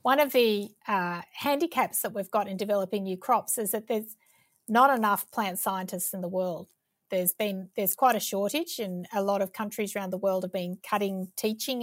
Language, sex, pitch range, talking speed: English, female, 190-225 Hz, 205 wpm